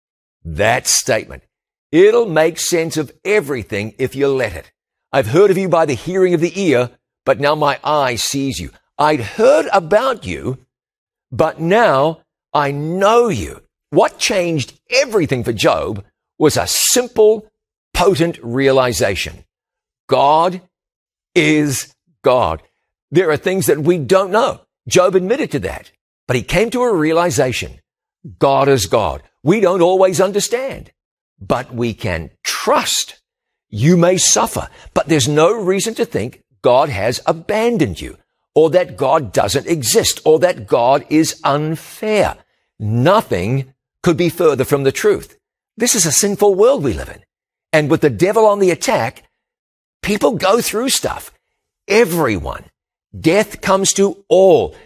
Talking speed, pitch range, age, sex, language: 145 wpm, 140-205 Hz, 50-69, male, English